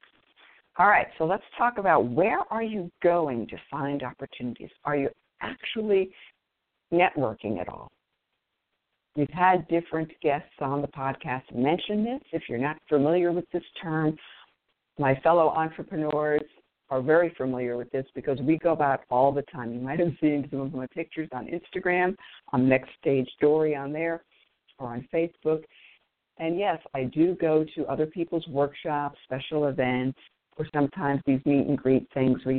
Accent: American